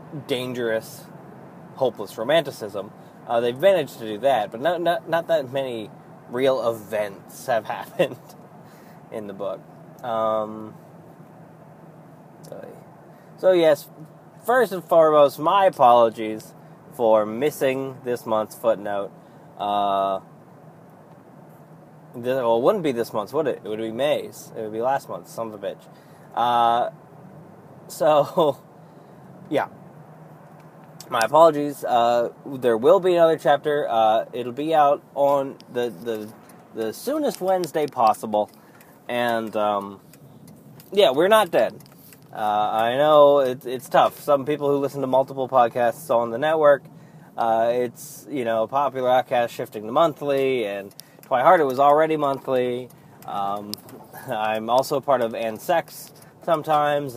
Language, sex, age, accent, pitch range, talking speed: English, male, 20-39, American, 115-160 Hz, 130 wpm